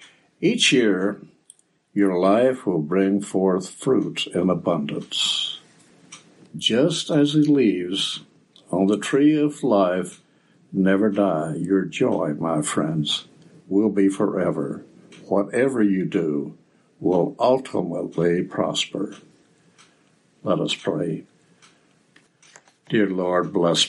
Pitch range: 95-125 Hz